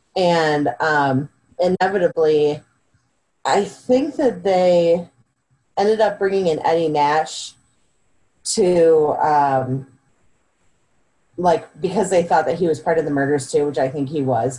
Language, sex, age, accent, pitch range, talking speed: English, female, 30-49, American, 135-180 Hz, 130 wpm